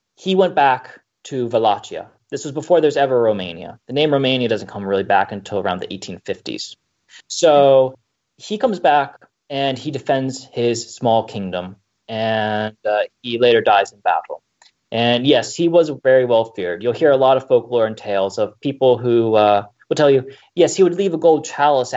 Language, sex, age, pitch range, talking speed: English, male, 20-39, 105-135 Hz, 185 wpm